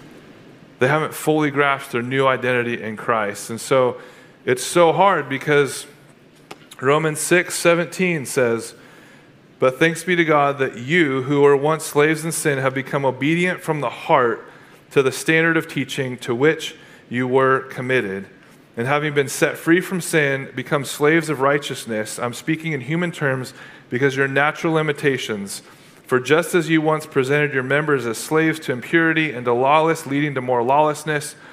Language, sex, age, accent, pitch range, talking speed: English, male, 30-49, American, 125-155 Hz, 165 wpm